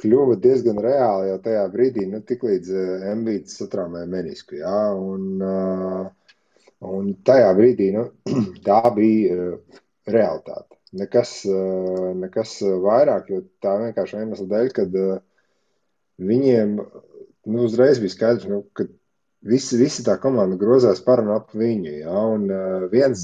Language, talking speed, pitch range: English, 115 wpm, 95-115 Hz